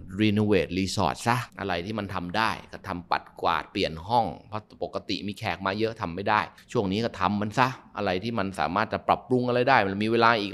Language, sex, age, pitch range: Thai, male, 20-39, 95-115 Hz